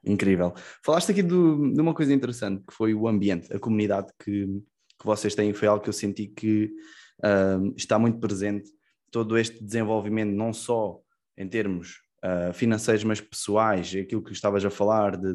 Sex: male